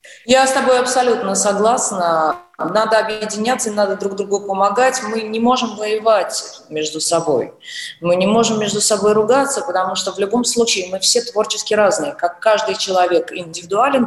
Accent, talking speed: native, 155 wpm